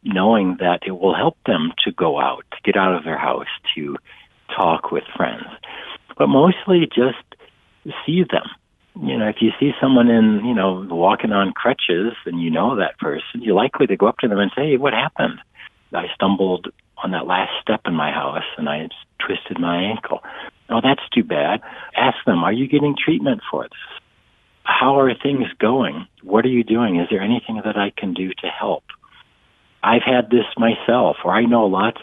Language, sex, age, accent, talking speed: English, male, 60-79, American, 195 wpm